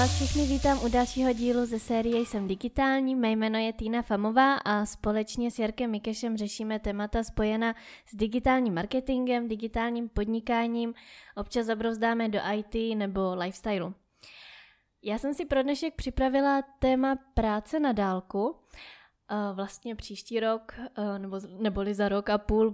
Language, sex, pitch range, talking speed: Czech, female, 200-240 Hz, 135 wpm